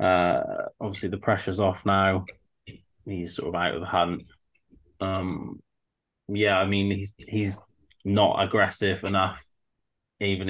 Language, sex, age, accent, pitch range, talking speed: English, male, 20-39, British, 95-110 Hz, 130 wpm